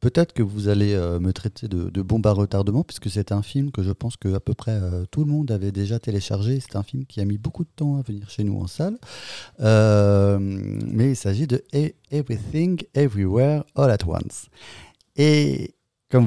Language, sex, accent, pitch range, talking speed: French, male, French, 100-130 Hz, 210 wpm